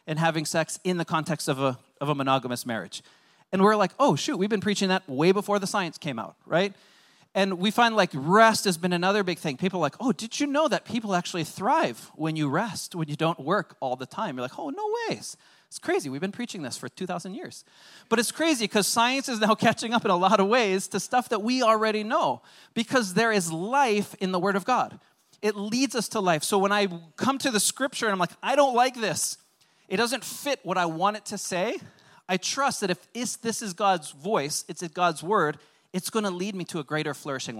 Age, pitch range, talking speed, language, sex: 30-49, 170-225 Hz, 240 wpm, English, male